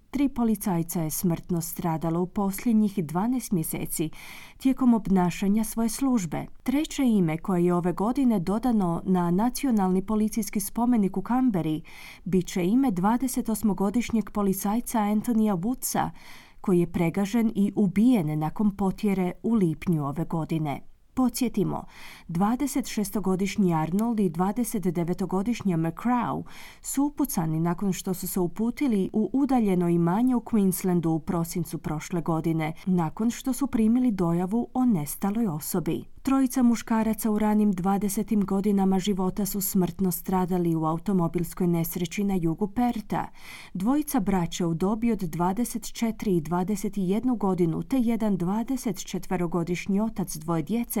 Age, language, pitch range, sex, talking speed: 30-49, Croatian, 175-230 Hz, female, 120 wpm